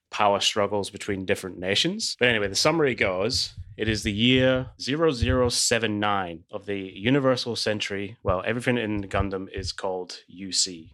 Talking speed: 145 wpm